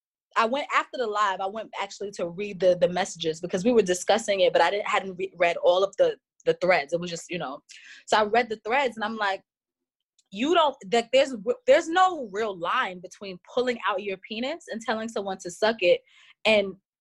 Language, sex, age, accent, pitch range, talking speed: English, female, 20-39, American, 195-255 Hz, 220 wpm